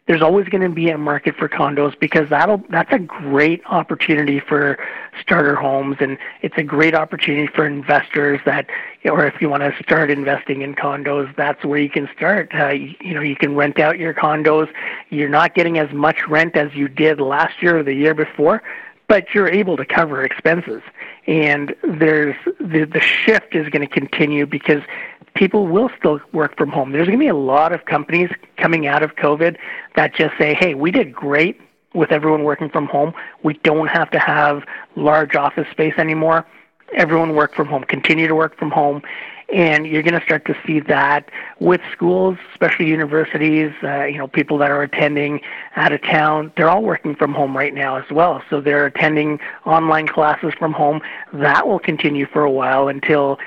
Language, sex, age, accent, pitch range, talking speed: English, male, 40-59, American, 145-160 Hz, 195 wpm